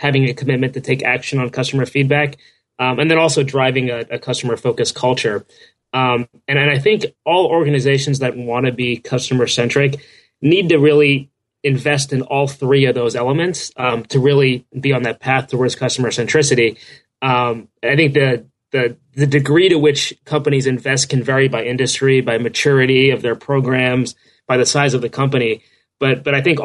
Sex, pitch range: male, 125-145 Hz